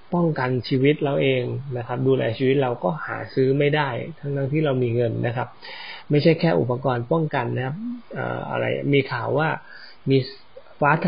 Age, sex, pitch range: 20-39, male, 120-145 Hz